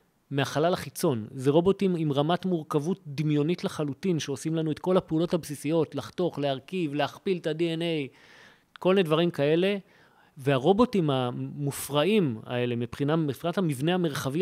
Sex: male